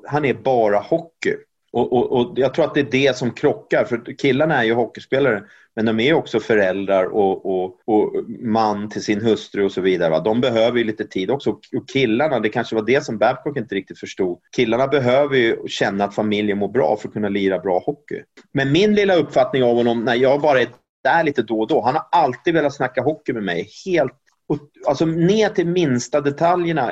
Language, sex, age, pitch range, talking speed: English, male, 30-49, 110-155 Hz, 215 wpm